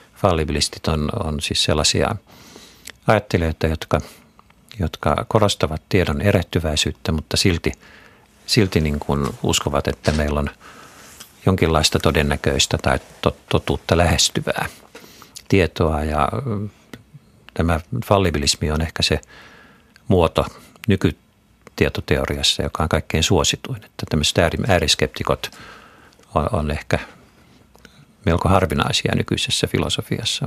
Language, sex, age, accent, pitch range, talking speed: Finnish, male, 50-69, native, 75-100 Hz, 90 wpm